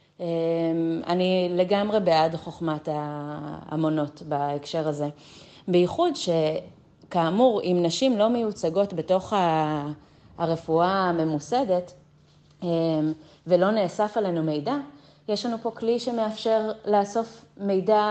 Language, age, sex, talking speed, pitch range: Hebrew, 30-49, female, 90 wpm, 155-190 Hz